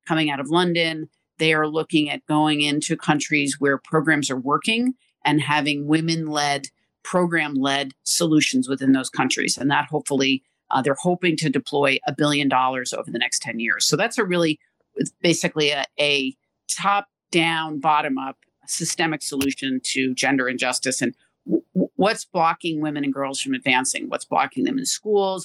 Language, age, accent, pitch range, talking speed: English, 50-69, American, 140-170 Hz, 170 wpm